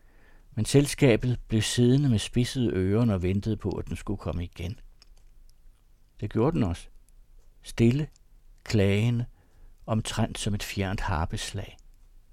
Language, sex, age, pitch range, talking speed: Danish, male, 60-79, 95-120 Hz, 125 wpm